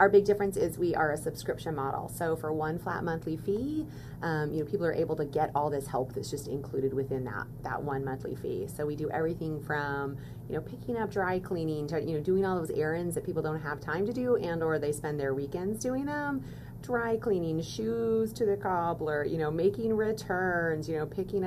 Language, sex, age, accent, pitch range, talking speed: English, female, 30-49, American, 150-190 Hz, 225 wpm